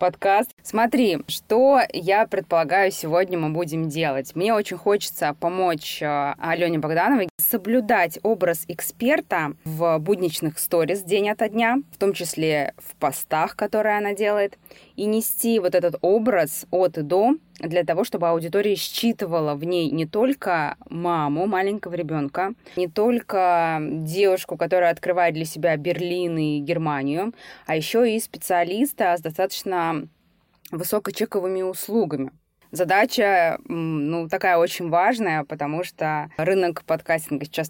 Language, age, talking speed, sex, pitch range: Russian, 20-39, 125 wpm, female, 155-195 Hz